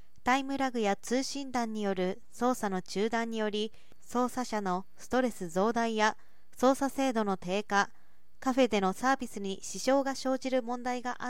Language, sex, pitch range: Japanese, female, 195-255 Hz